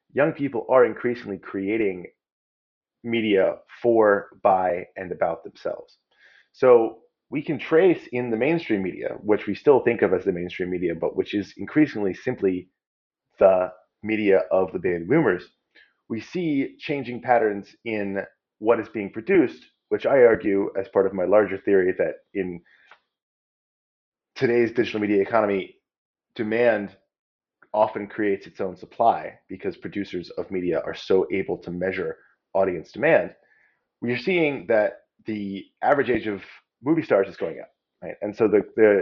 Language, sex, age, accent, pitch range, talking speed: English, male, 30-49, American, 100-160 Hz, 150 wpm